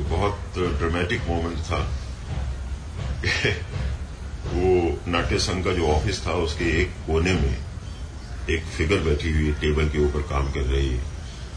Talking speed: 130 wpm